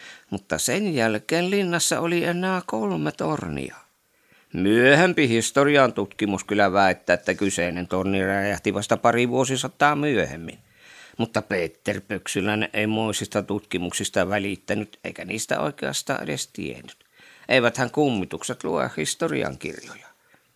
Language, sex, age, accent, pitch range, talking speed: Finnish, male, 50-69, native, 105-155 Hz, 110 wpm